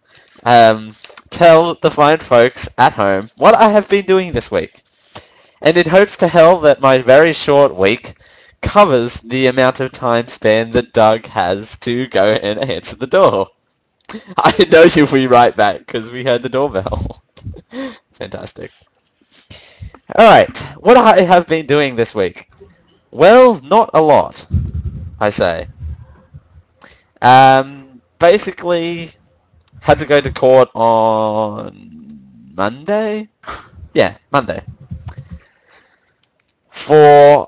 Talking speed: 125 wpm